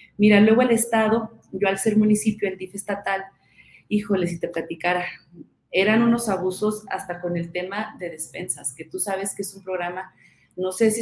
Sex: female